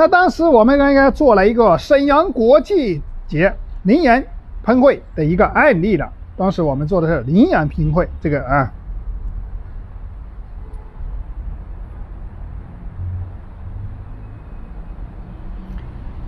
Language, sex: Chinese, male